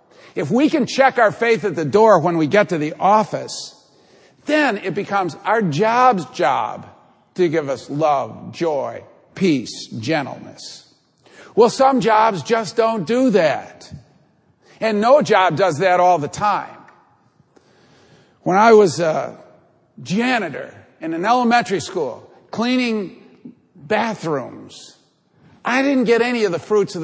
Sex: male